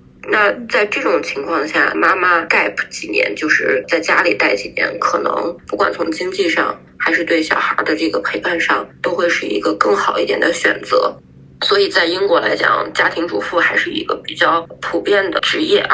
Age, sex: 20-39, female